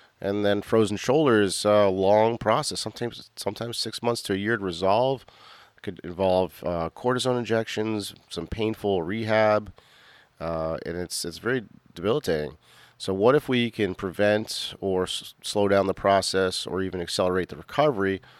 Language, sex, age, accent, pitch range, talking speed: English, male, 40-59, American, 90-110 Hz, 160 wpm